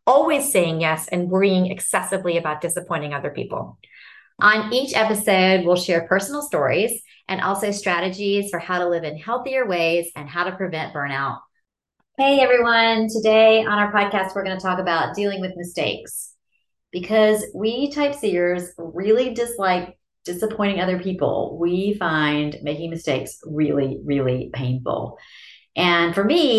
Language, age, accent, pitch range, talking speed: English, 30-49, American, 155-200 Hz, 145 wpm